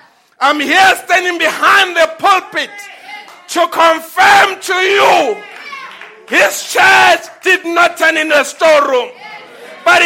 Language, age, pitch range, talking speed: English, 60-79, 310-355 Hz, 115 wpm